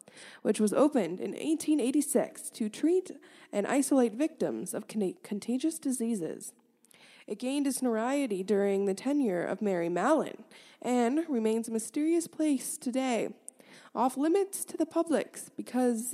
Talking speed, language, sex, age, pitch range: 130 wpm, English, female, 20-39, 210-280 Hz